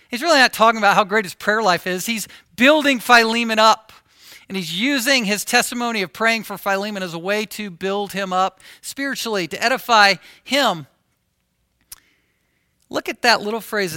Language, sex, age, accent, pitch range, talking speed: English, male, 50-69, American, 165-210 Hz, 170 wpm